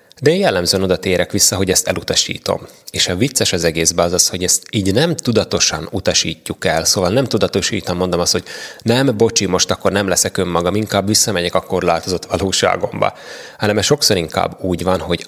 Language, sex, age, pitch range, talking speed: Hungarian, male, 20-39, 85-105 Hz, 185 wpm